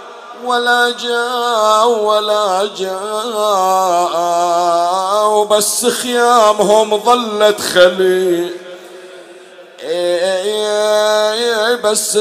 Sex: male